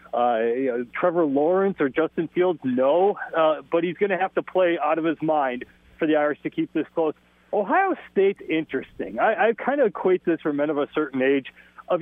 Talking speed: 205 wpm